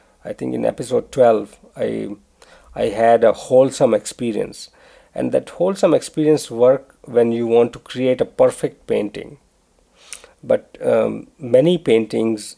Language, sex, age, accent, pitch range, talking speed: English, male, 50-69, Indian, 115-180 Hz, 135 wpm